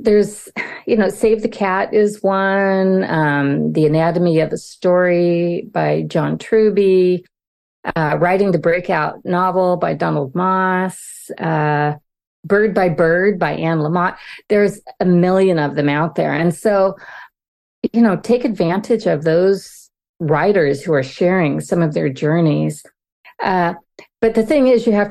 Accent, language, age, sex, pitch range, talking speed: American, English, 40-59, female, 165-215 Hz, 150 wpm